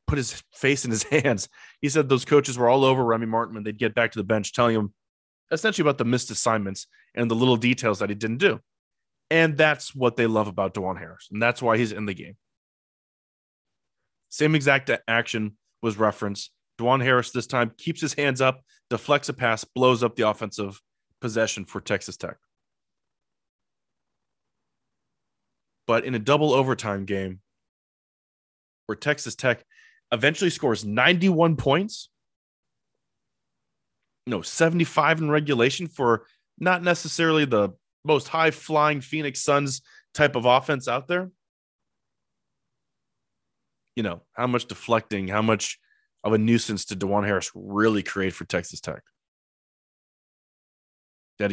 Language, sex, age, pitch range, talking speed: English, male, 20-39, 105-145 Hz, 150 wpm